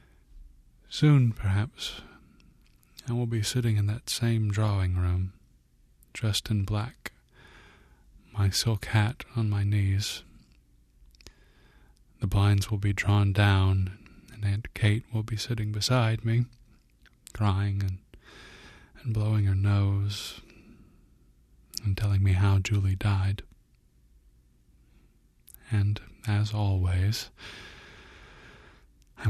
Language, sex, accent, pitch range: English, male, American, 90-105 Hz